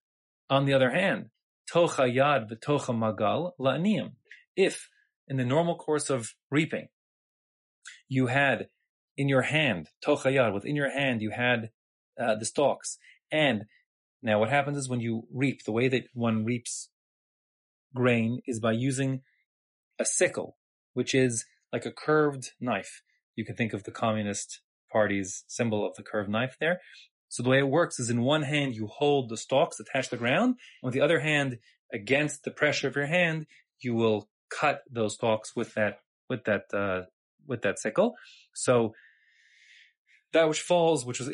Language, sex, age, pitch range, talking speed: English, male, 30-49, 115-145 Hz, 170 wpm